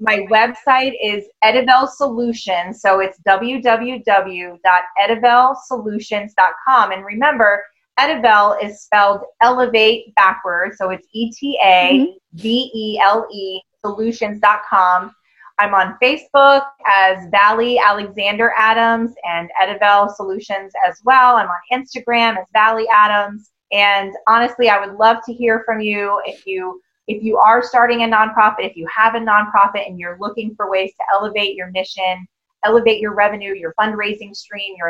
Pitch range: 195-230 Hz